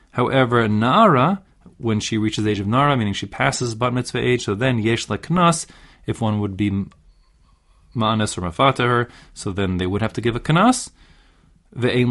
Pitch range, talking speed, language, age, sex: 100-135 Hz, 180 wpm, English, 30-49, male